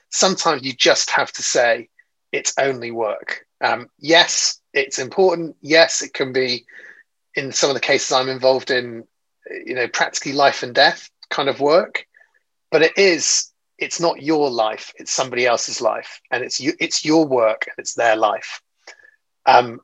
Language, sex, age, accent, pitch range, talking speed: English, male, 30-49, British, 120-160 Hz, 170 wpm